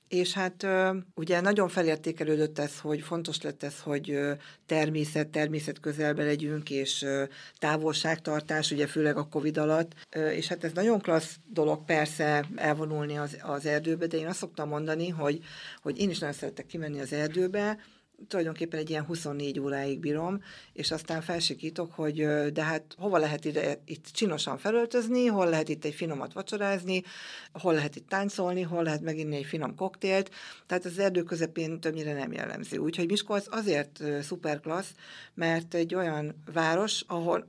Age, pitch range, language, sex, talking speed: 50-69, 150-180 Hz, Hungarian, female, 155 wpm